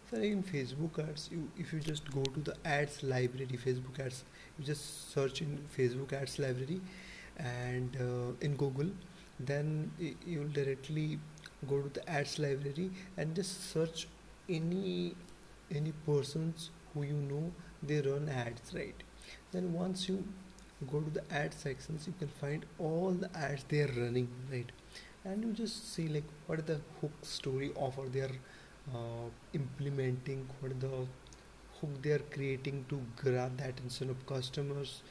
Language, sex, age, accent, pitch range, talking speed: English, male, 30-49, Indian, 135-165 Hz, 155 wpm